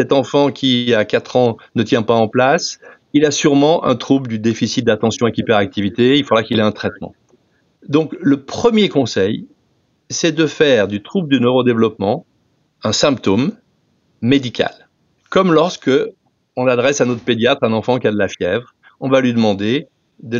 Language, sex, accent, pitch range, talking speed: French, male, French, 115-160 Hz, 175 wpm